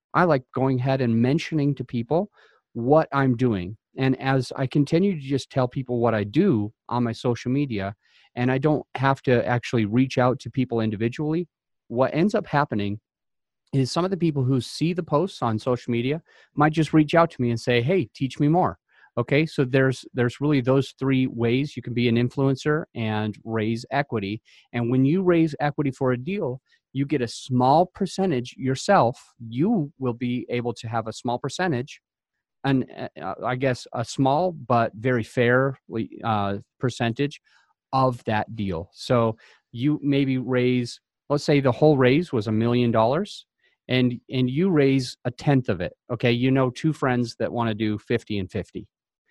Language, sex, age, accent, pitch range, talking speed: English, male, 30-49, American, 120-145 Hz, 185 wpm